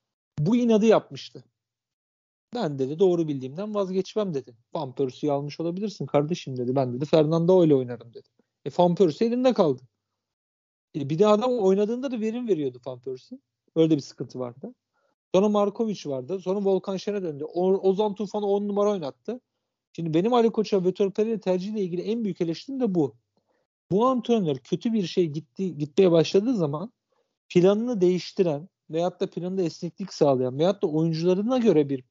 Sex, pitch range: male, 150-220 Hz